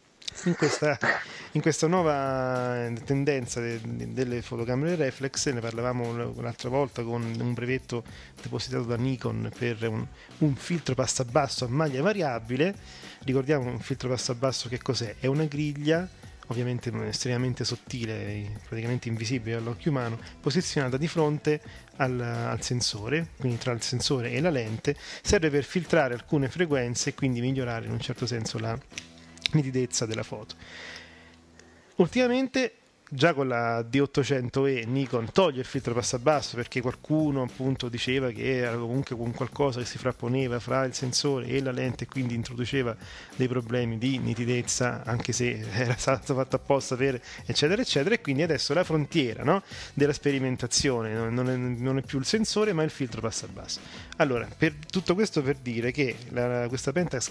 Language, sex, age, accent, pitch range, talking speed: Italian, male, 30-49, native, 120-140 Hz, 160 wpm